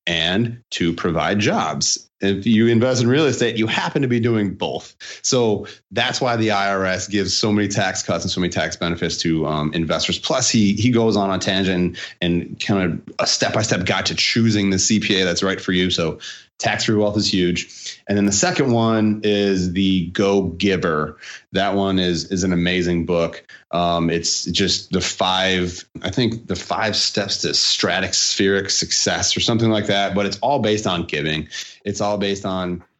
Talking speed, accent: 185 wpm, American